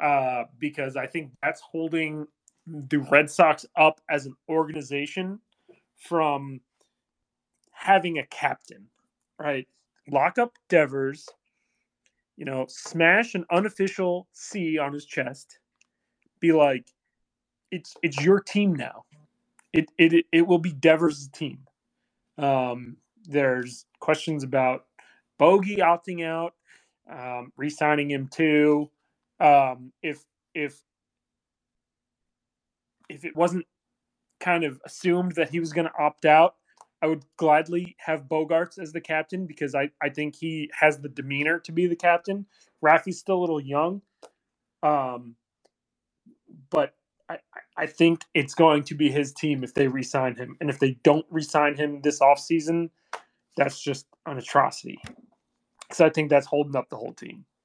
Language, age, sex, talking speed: English, 30-49, male, 140 wpm